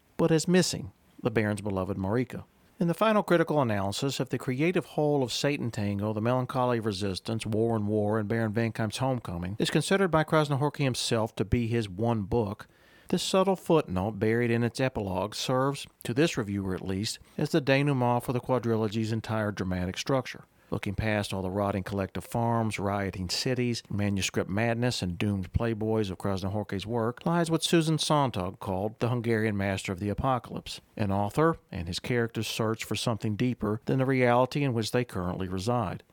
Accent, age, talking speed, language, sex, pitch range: American, 50-69, 180 wpm, English, male, 105-130 Hz